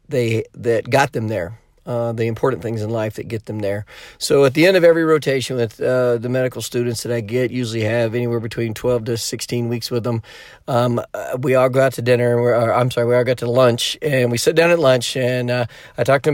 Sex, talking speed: male, 255 wpm